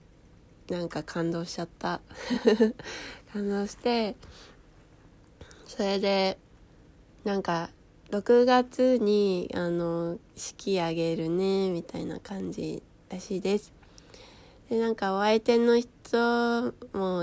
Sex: female